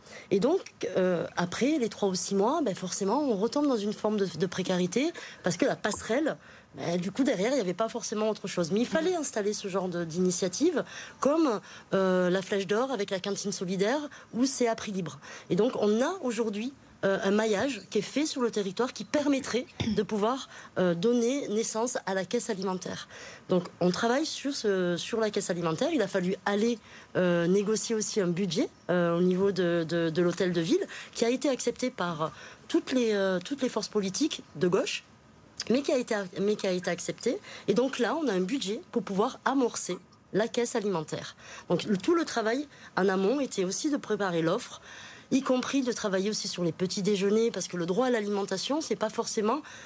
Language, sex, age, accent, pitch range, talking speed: French, female, 20-39, French, 185-245 Hz, 210 wpm